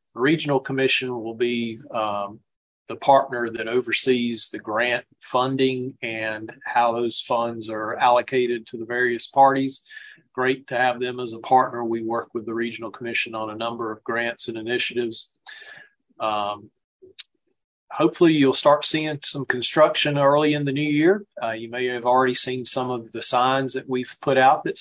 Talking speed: 165 wpm